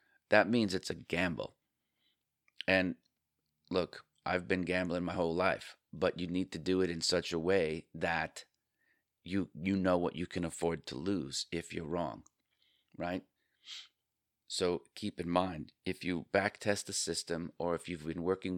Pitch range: 80-90 Hz